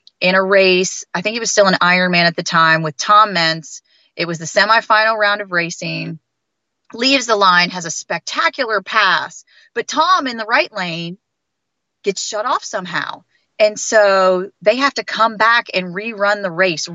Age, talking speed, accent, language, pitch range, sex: 30-49, 180 wpm, American, English, 175-225 Hz, female